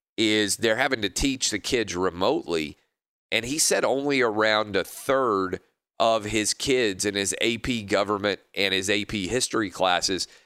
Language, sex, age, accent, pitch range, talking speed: English, male, 40-59, American, 100-120 Hz, 155 wpm